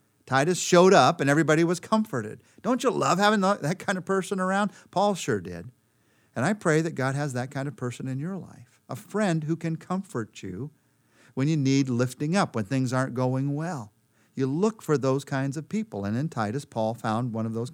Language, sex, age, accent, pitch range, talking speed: English, male, 50-69, American, 120-180 Hz, 215 wpm